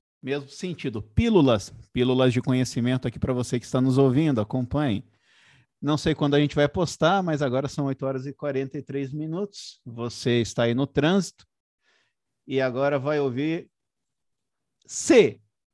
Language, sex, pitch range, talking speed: Portuguese, male, 135-180 Hz, 150 wpm